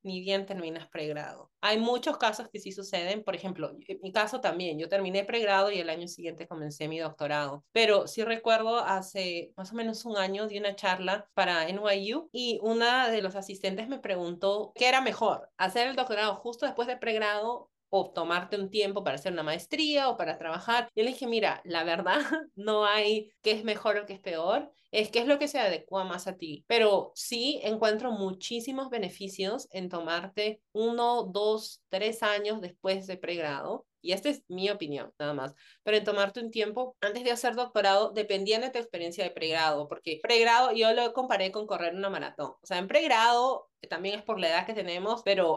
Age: 30-49